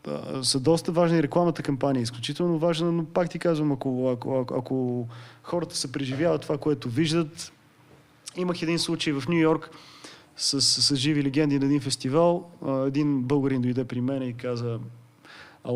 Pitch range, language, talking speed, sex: 130-165 Hz, Bulgarian, 160 wpm, male